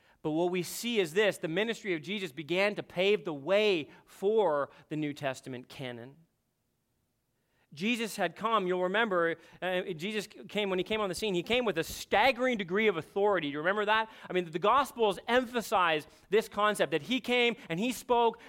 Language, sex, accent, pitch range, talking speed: English, male, American, 180-245 Hz, 190 wpm